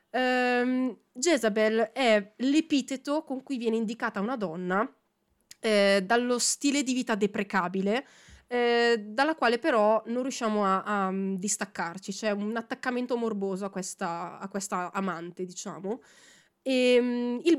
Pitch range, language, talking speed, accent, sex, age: 195-245 Hz, Italian, 115 wpm, native, female, 20-39